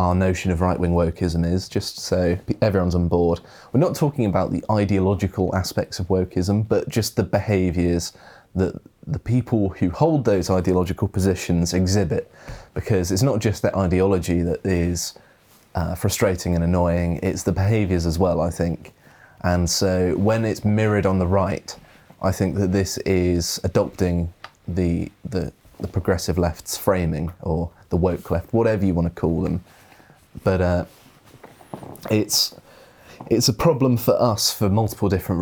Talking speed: 160 wpm